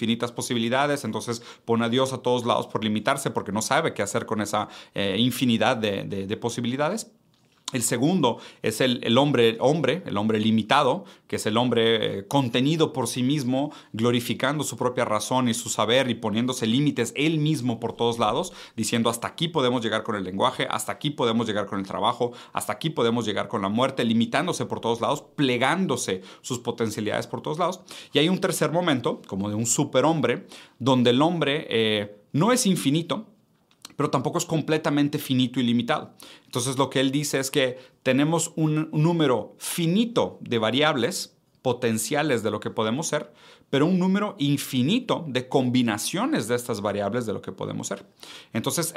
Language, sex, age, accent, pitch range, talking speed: Spanish, male, 40-59, Mexican, 115-150 Hz, 180 wpm